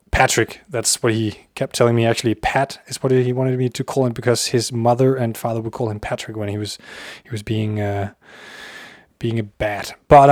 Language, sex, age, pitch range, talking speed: Danish, male, 20-39, 115-140 Hz, 215 wpm